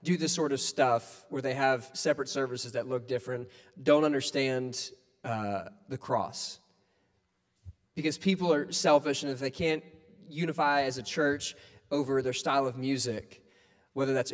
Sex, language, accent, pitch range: male, English, American, 105-165 Hz